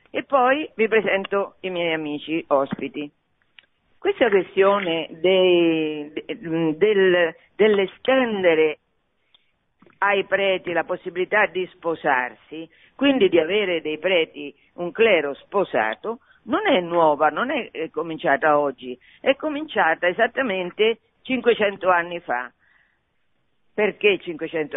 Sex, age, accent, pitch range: female, 50-69, native, 165-225 Hz